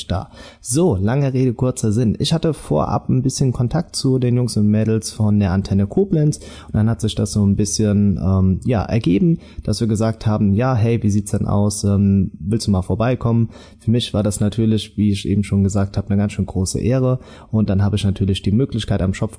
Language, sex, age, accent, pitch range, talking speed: German, male, 20-39, German, 100-120 Hz, 225 wpm